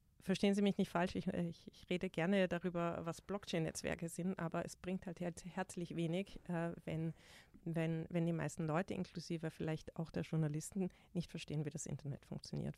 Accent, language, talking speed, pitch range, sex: German, German, 170 wpm, 160-190 Hz, female